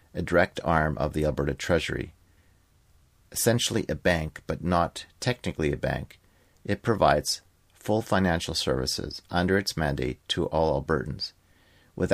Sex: male